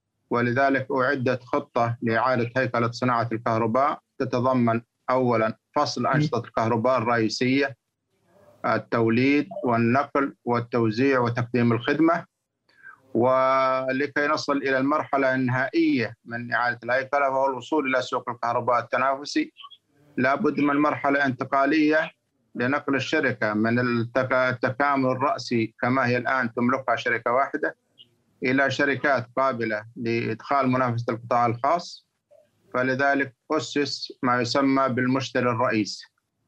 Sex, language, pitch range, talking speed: male, Arabic, 120-135 Hz, 100 wpm